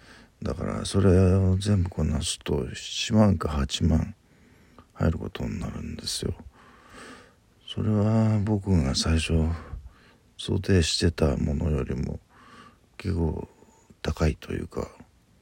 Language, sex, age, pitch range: Japanese, male, 50-69, 80-95 Hz